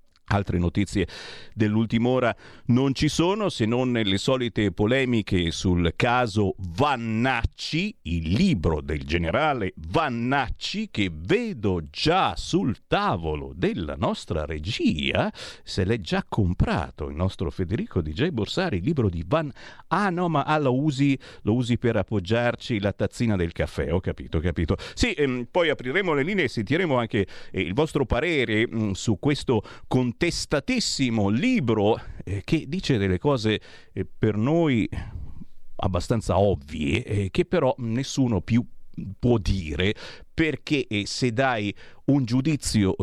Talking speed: 140 wpm